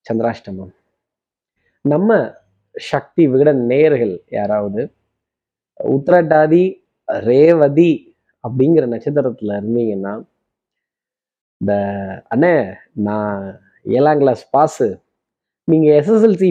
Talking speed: 60 wpm